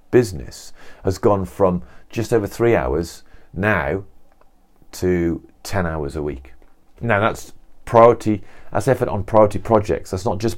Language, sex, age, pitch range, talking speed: English, male, 40-59, 85-110 Hz, 140 wpm